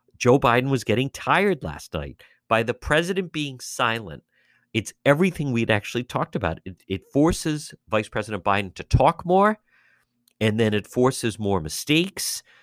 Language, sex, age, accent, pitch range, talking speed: English, male, 50-69, American, 105-135 Hz, 155 wpm